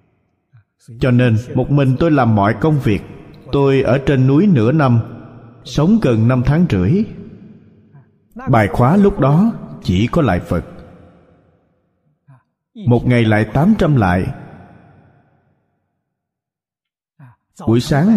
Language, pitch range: Vietnamese, 100-140 Hz